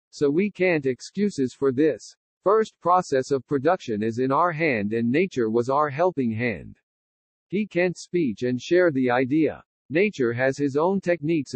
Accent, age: American, 50-69